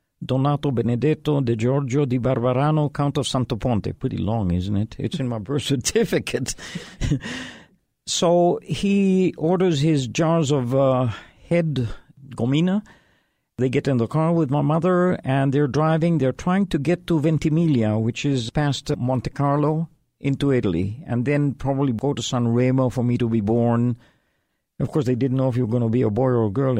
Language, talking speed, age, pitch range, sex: English, 180 wpm, 50-69, 120-150 Hz, male